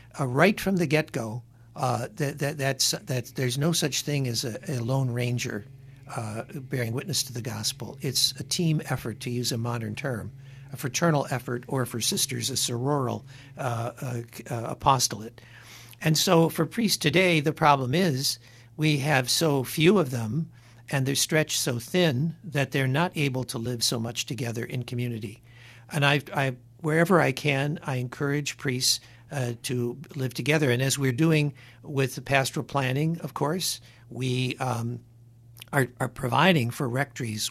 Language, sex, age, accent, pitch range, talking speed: English, male, 60-79, American, 120-145 Hz, 170 wpm